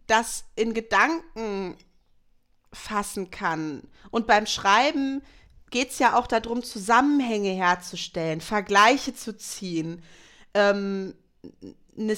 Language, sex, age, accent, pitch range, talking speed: German, female, 30-49, German, 185-235 Hz, 100 wpm